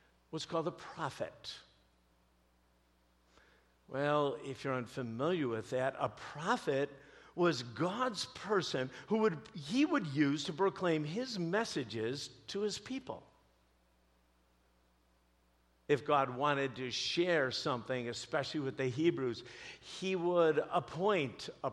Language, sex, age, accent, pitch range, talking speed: English, male, 50-69, American, 120-185 Hz, 115 wpm